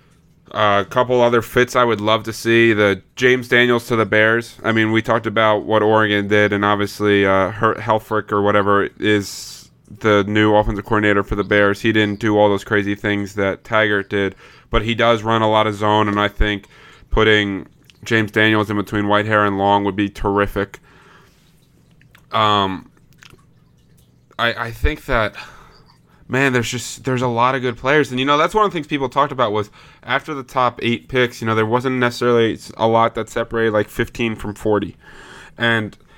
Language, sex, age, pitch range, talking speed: English, male, 20-39, 105-120 Hz, 190 wpm